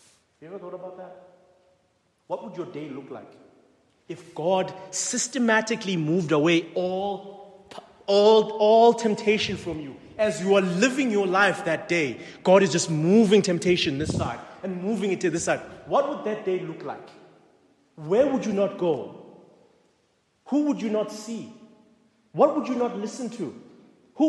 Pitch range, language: 185-240 Hz, English